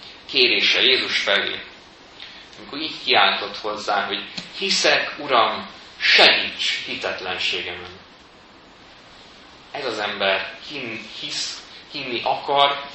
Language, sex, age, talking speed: Hungarian, male, 30-49, 90 wpm